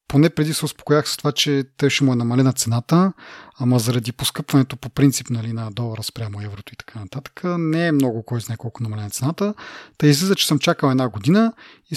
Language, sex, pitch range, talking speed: Bulgarian, male, 130-185 Hz, 210 wpm